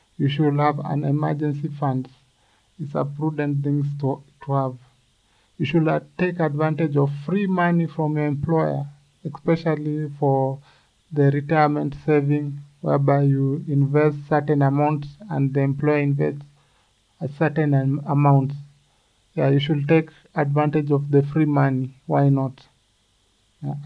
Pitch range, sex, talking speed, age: 135-155 Hz, male, 135 wpm, 50-69